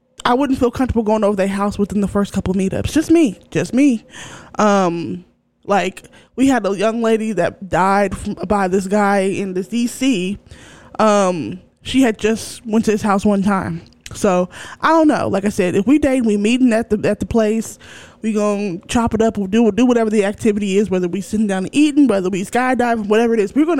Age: 20-39